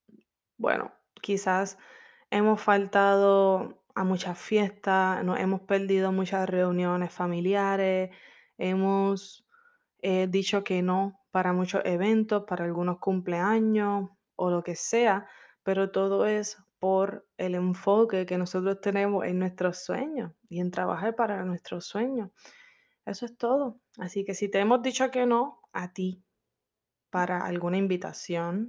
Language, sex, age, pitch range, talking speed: Spanish, female, 20-39, 185-225 Hz, 130 wpm